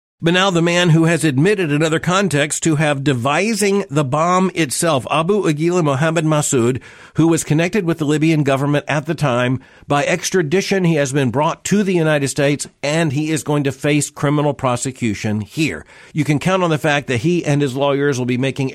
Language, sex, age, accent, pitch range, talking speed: English, male, 50-69, American, 130-170 Hz, 200 wpm